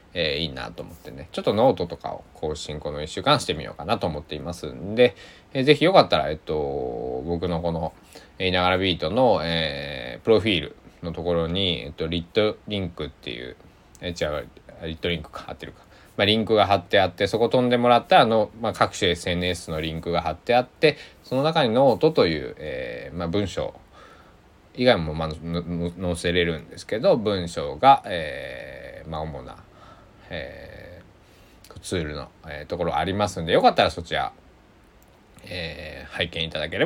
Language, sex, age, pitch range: Japanese, male, 20-39, 80-105 Hz